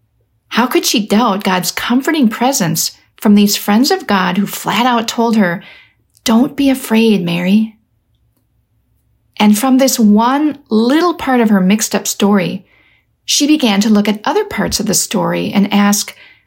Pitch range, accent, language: 180-230 Hz, American, English